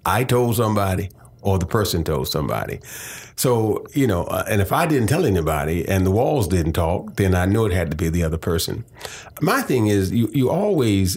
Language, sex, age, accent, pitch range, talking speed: English, male, 40-59, American, 90-120 Hz, 210 wpm